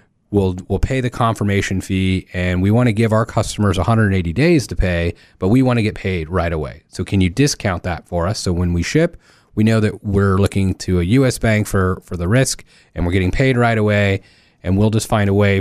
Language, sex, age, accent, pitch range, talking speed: English, male, 30-49, American, 90-110 Hz, 235 wpm